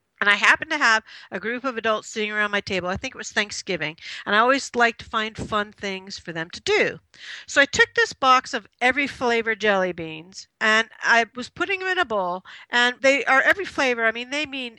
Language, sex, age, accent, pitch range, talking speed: English, female, 50-69, American, 220-330 Hz, 230 wpm